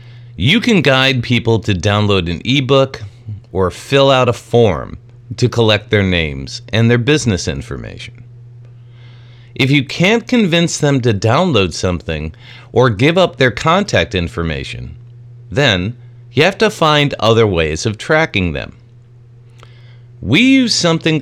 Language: English